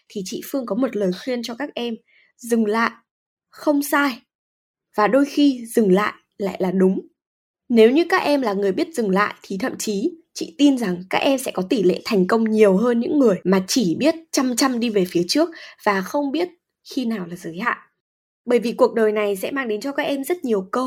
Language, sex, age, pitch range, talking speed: Vietnamese, female, 20-39, 205-310 Hz, 230 wpm